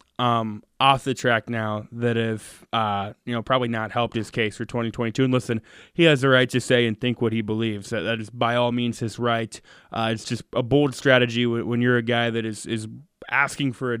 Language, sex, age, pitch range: Thai, male, 20-39, 115-145 Hz